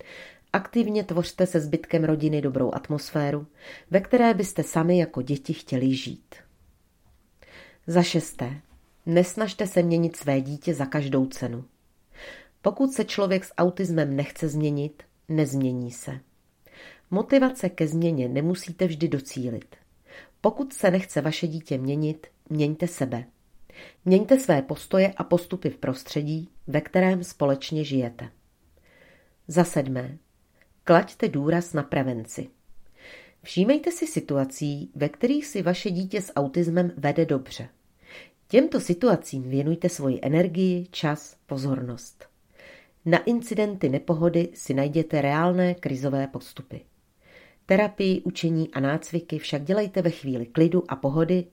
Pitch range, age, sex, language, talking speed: 140-180 Hz, 40-59, female, Czech, 120 wpm